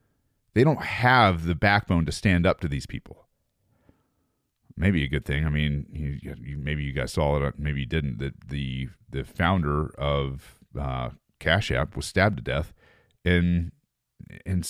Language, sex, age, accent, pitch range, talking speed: English, male, 40-59, American, 75-110 Hz, 165 wpm